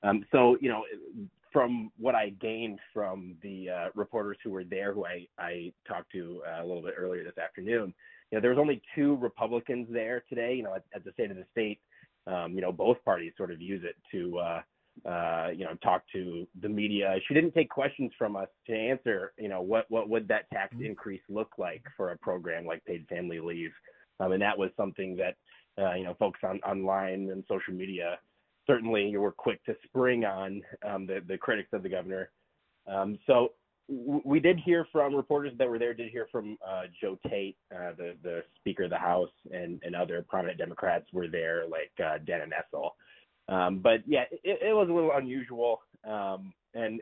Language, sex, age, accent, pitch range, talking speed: English, male, 30-49, American, 95-135 Hz, 205 wpm